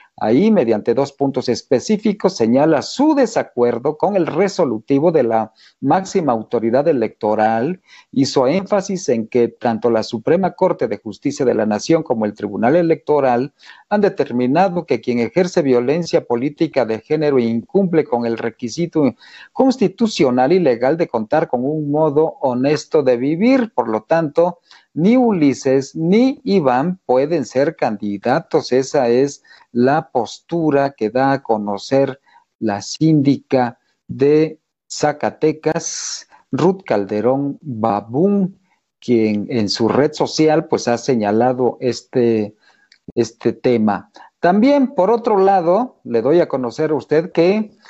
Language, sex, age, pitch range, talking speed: Spanish, male, 50-69, 120-175 Hz, 130 wpm